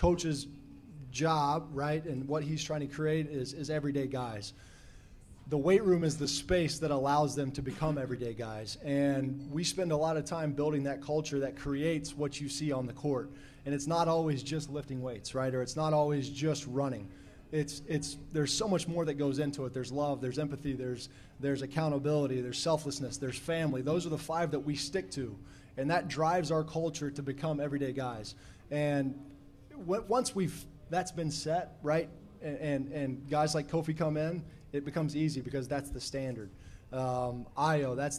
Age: 20-39